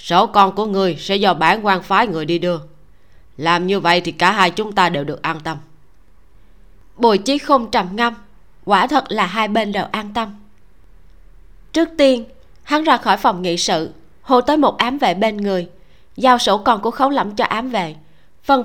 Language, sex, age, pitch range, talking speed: Vietnamese, female, 20-39, 185-245 Hz, 200 wpm